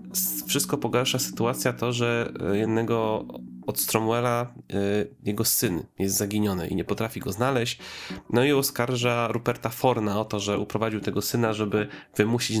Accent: native